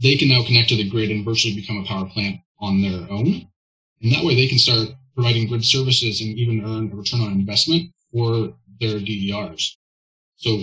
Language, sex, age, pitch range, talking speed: English, male, 20-39, 100-120 Hz, 205 wpm